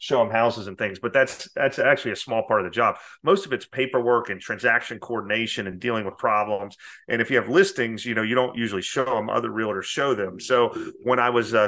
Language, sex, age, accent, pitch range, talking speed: English, male, 30-49, American, 105-120 Hz, 240 wpm